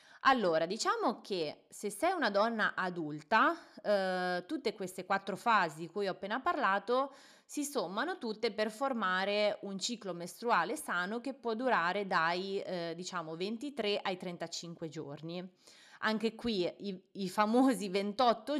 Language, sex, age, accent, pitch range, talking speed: Italian, female, 30-49, native, 180-230 Hz, 140 wpm